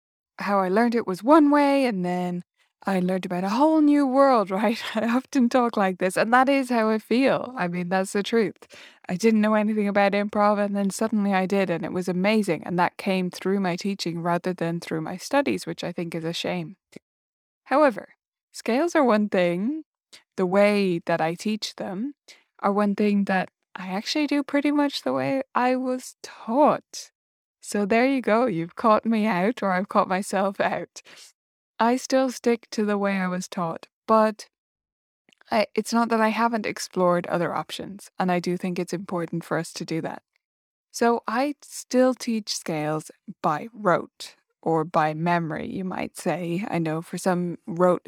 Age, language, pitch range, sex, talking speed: 10-29, English, 180-235 Hz, female, 185 wpm